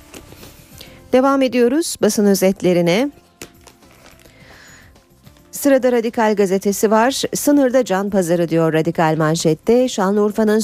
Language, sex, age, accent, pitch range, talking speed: Turkish, female, 40-59, native, 160-230 Hz, 85 wpm